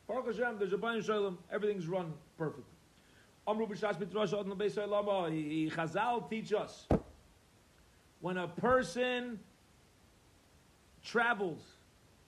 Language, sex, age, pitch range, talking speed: English, male, 40-59, 150-200 Hz, 65 wpm